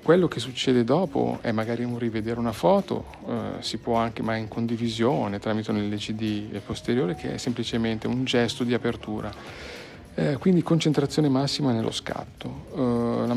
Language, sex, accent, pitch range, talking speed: Italian, male, native, 110-125 Hz, 160 wpm